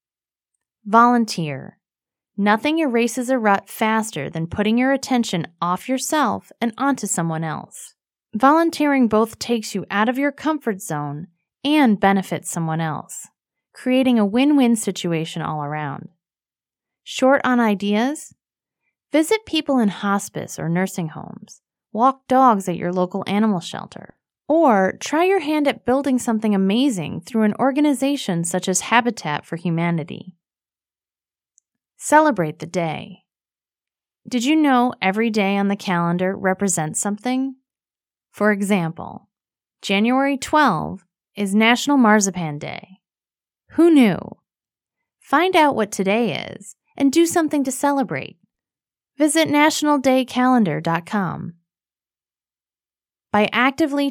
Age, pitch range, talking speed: 30-49, 185-265 Hz, 120 wpm